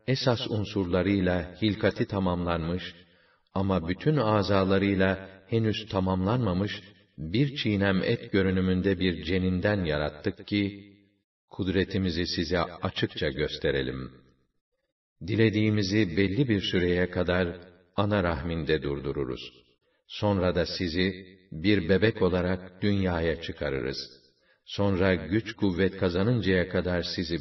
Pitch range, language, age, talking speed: 90-105 Hz, Turkish, 50-69, 95 wpm